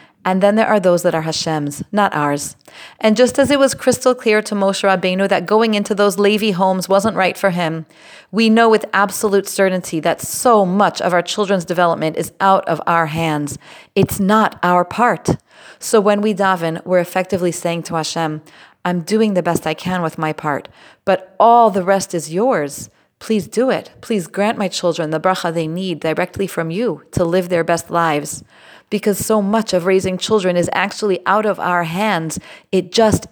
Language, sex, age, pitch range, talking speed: English, female, 30-49, 170-200 Hz, 195 wpm